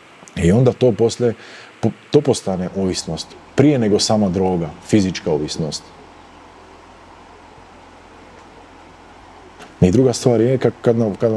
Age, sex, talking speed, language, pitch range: 40-59, male, 95 wpm, Croatian, 90-115 Hz